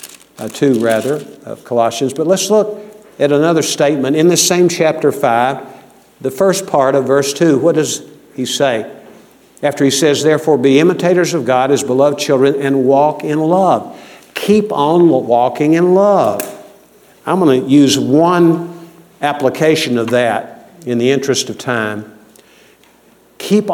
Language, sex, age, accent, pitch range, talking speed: English, male, 50-69, American, 130-165 Hz, 150 wpm